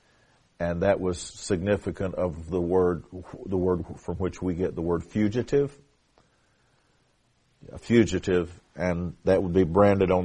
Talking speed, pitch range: 140 wpm, 85-100 Hz